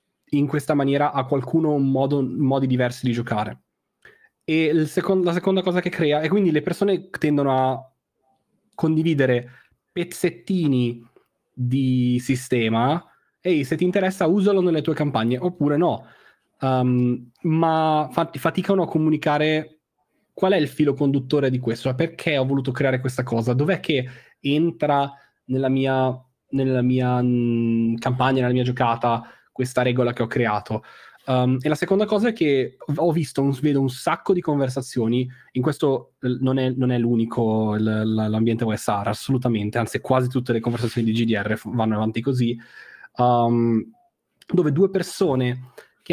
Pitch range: 125-160 Hz